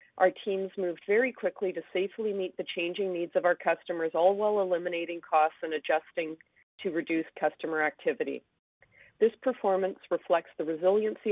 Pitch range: 160-190 Hz